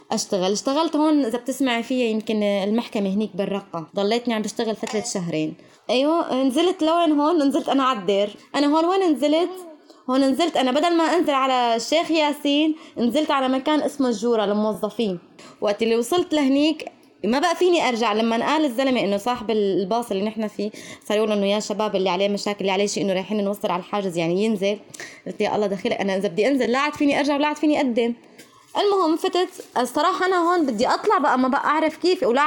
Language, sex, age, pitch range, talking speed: Arabic, female, 20-39, 205-295 Hz, 190 wpm